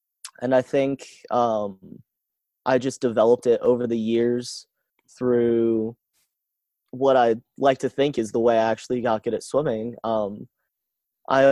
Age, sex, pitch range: 20-39, male, 115-135 Hz